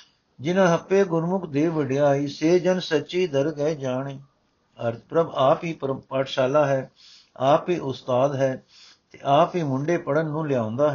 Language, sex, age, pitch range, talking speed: Punjabi, male, 60-79, 140-175 Hz, 155 wpm